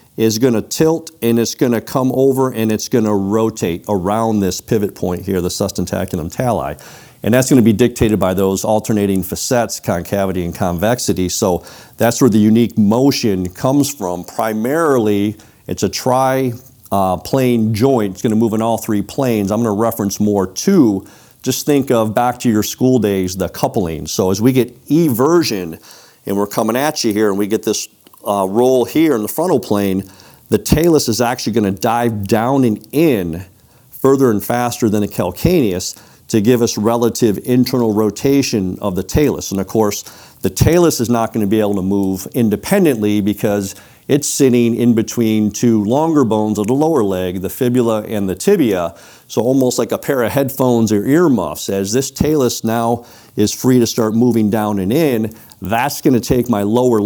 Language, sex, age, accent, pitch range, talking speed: English, male, 50-69, American, 100-125 Hz, 180 wpm